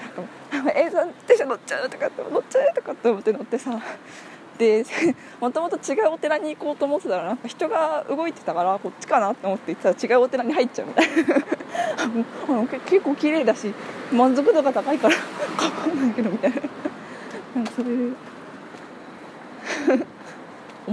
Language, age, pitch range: Japanese, 20-39, 235-315 Hz